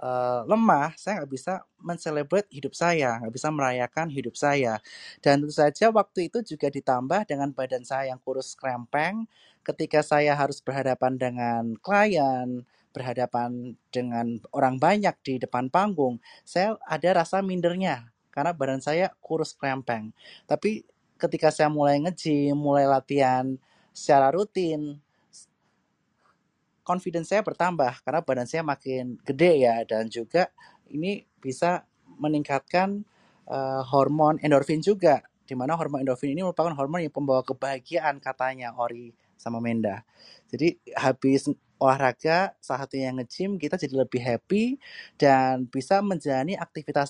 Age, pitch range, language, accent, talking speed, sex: 20-39, 130-170 Hz, Indonesian, native, 130 wpm, male